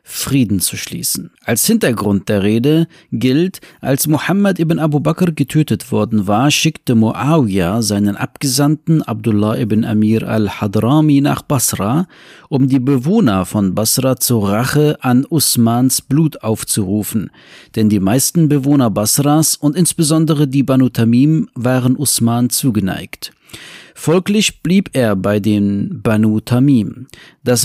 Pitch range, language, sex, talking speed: 110-150 Hz, German, male, 125 wpm